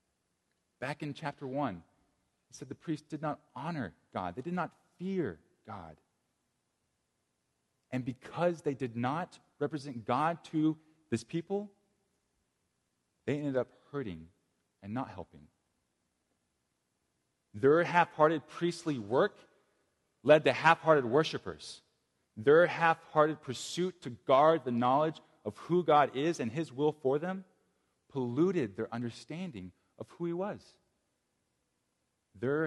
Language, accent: English, American